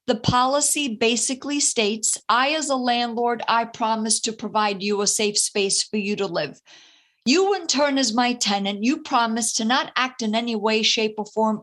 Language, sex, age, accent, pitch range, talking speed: English, female, 50-69, American, 210-260 Hz, 190 wpm